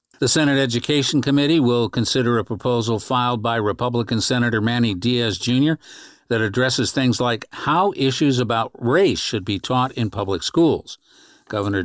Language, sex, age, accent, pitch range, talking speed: English, male, 50-69, American, 110-135 Hz, 150 wpm